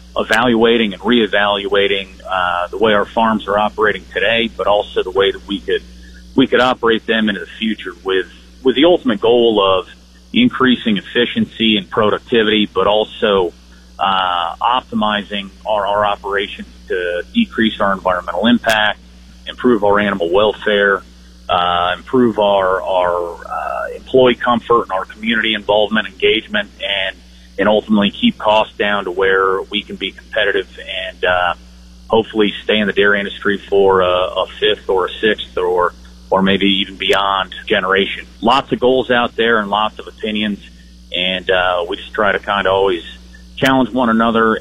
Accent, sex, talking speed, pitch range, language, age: American, male, 155 wpm, 95-115 Hz, English, 40-59